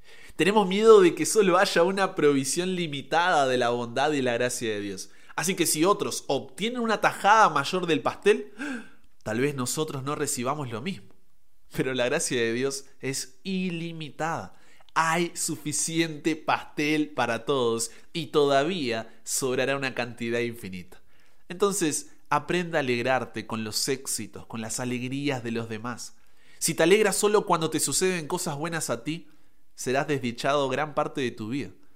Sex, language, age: male, Spanish, 20-39